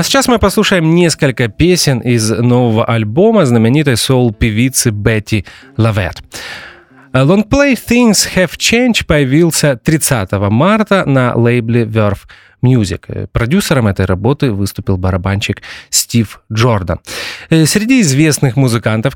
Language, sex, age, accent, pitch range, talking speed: Russian, male, 30-49, native, 110-160 Hz, 110 wpm